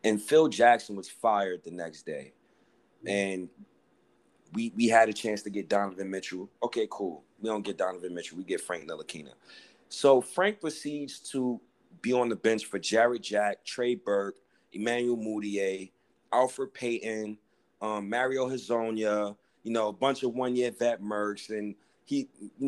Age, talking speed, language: 30-49, 160 wpm, English